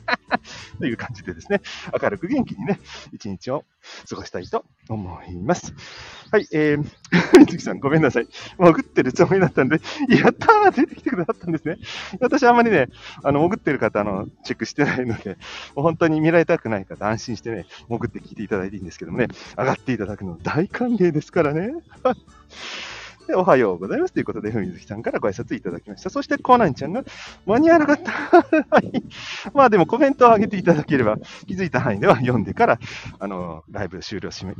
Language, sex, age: Japanese, male, 40-59